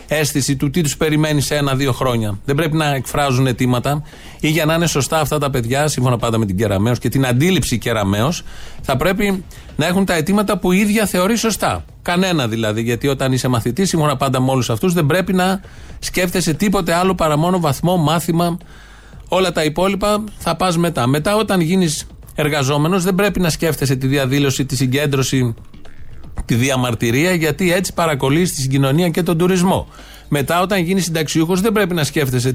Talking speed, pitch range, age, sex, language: 180 wpm, 130-180 Hz, 30-49, male, Greek